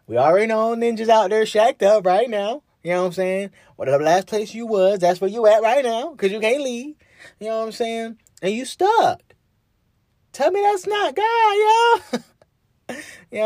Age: 20-39